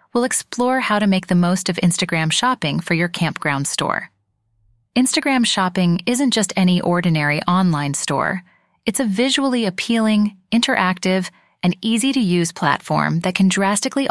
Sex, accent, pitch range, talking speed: female, American, 175-230 Hz, 140 wpm